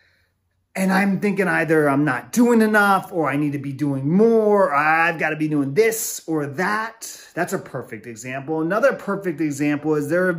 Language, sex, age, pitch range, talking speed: English, male, 30-49, 135-190 Hz, 185 wpm